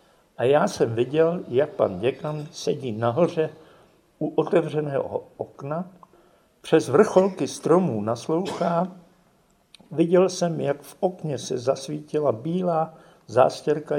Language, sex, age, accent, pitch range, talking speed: Czech, male, 50-69, native, 135-170 Hz, 105 wpm